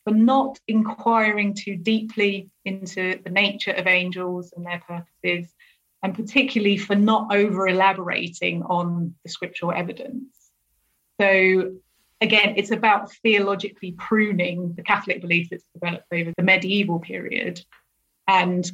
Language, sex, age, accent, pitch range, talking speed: English, female, 30-49, British, 180-205 Hz, 120 wpm